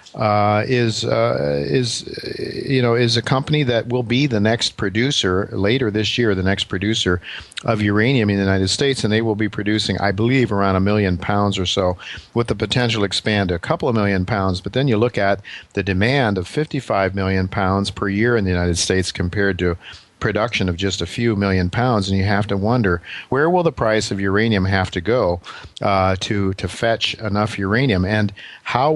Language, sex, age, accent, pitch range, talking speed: English, male, 50-69, American, 95-115 Hz, 205 wpm